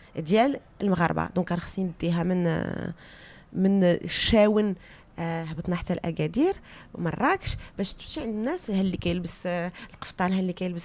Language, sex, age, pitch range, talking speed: Arabic, female, 20-39, 165-215 Hz, 140 wpm